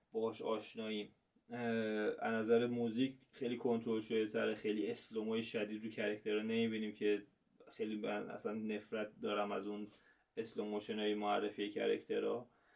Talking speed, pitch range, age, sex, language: 120 wpm, 105-120 Hz, 20-39, male, Persian